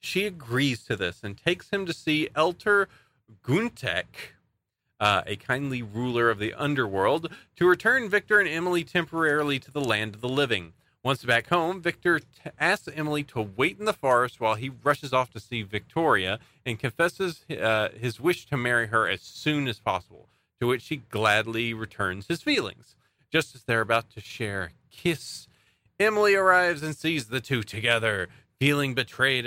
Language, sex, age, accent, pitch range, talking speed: English, male, 40-59, American, 115-150 Hz, 170 wpm